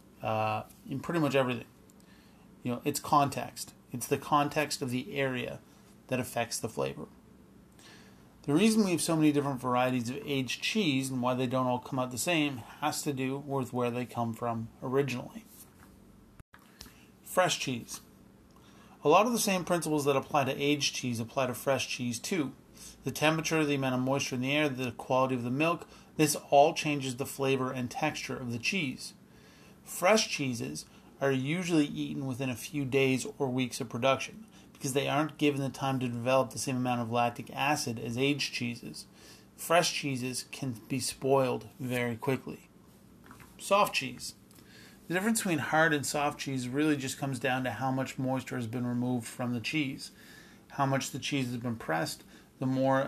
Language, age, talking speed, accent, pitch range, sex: English, 30-49, 180 wpm, American, 125-145 Hz, male